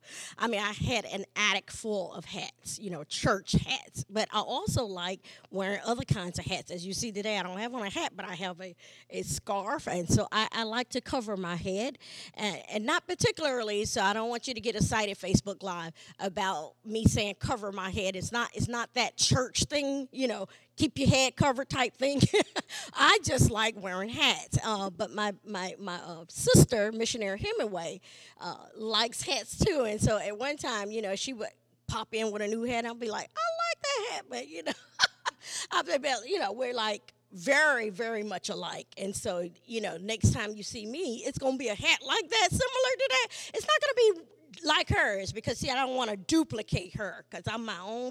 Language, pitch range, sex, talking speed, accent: English, 190-260 Hz, female, 215 wpm, American